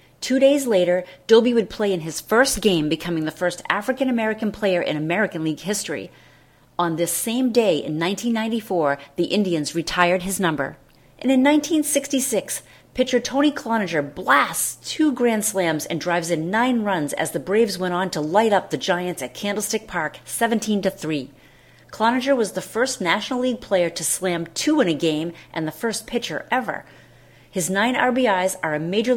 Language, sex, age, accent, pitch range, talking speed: English, female, 40-59, American, 165-225 Hz, 175 wpm